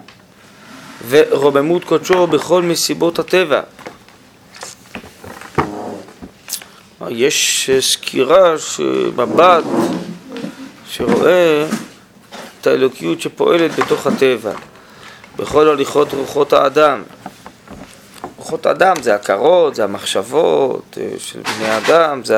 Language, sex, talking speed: Hebrew, male, 75 wpm